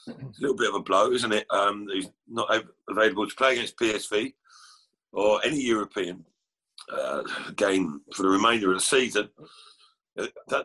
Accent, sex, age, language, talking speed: British, male, 50-69, English, 165 wpm